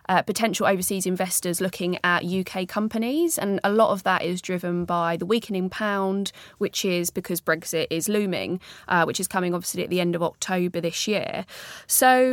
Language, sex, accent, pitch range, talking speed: English, female, British, 180-215 Hz, 185 wpm